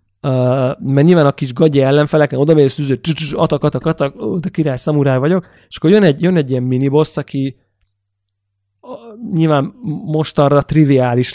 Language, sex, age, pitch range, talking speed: Hungarian, male, 30-49, 130-160 Hz, 165 wpm